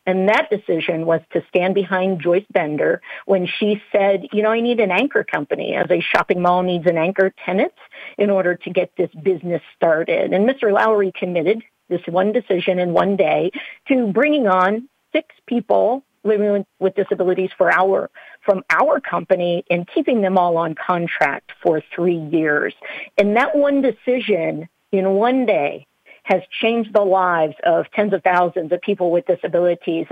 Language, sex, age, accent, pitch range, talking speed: English, female, 50-69, American, 175-205 Hz, 170 wpm